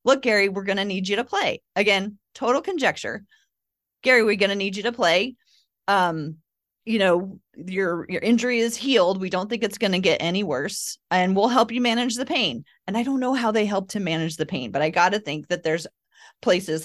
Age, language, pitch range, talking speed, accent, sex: 30-49, English, 175-220 Hz, 225 wpm, American, female